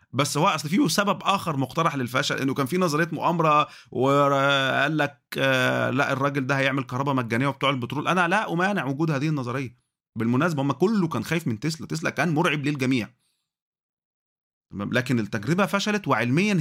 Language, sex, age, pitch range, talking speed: Arabic, male, 30-49, 130-170 Hz, 160 wpm